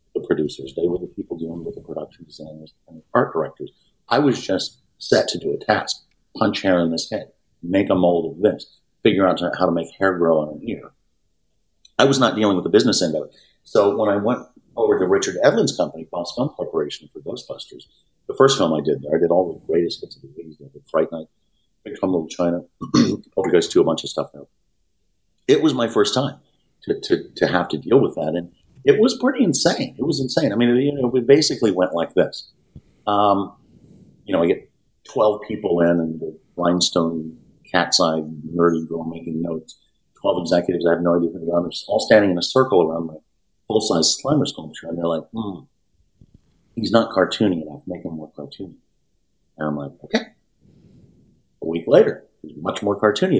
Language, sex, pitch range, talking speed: English, male, 80-105 Hz, 215 wpm